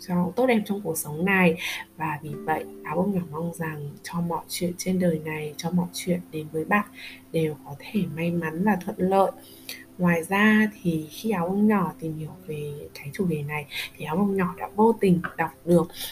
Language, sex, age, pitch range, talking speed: Vietnamese, female, 20-39, 160-205 Hz, 215 wpm